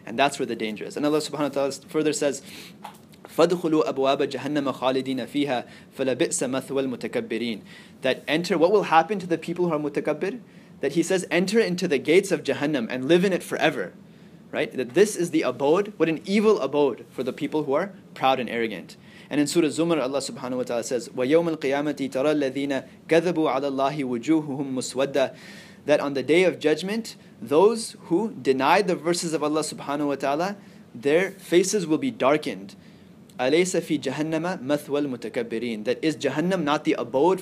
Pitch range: 135-185 Hz